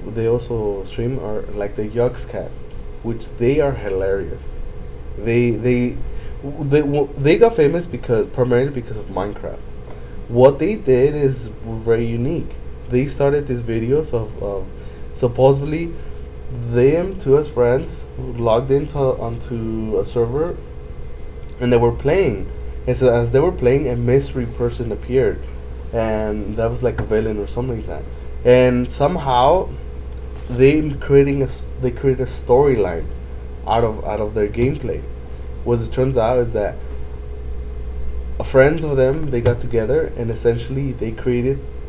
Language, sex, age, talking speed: English, male, 20-39, 145 wpm